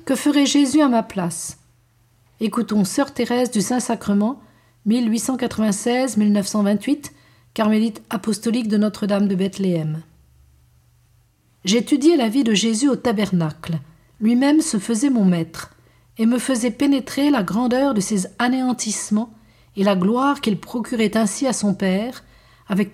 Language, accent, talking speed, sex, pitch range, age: French, French, 135 wpm, female, 185-245 Hz, 50-69